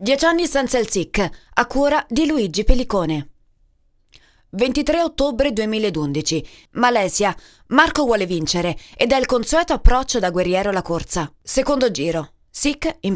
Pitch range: 185-260 Hz